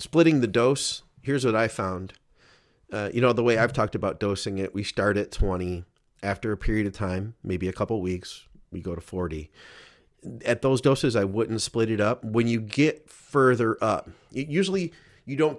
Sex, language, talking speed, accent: male, English, 195 wpm, American